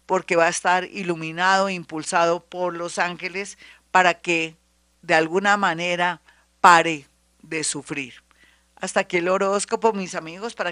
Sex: female